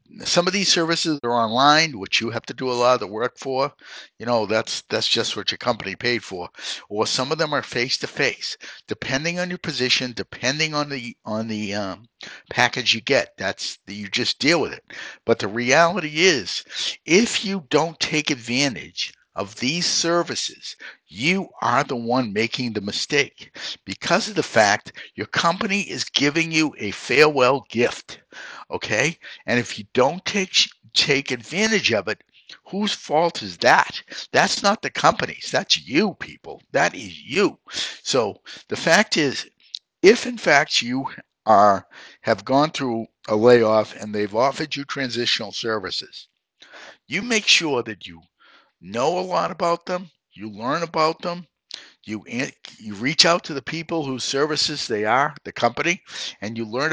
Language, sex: English, male